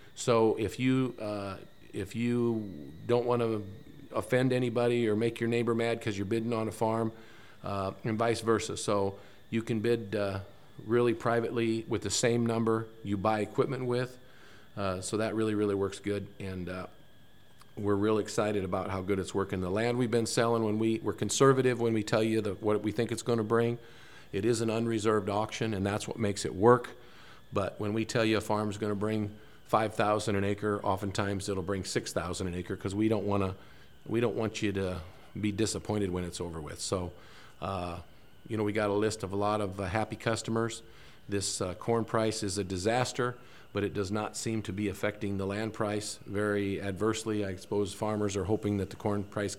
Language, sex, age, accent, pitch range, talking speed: English, male, 50-69, American, 100-115 Hz, 210 wpm